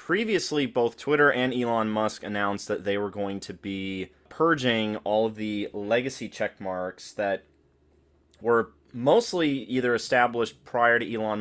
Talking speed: 140 wpm